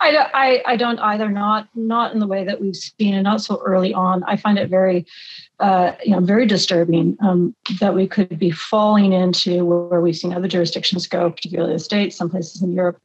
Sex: female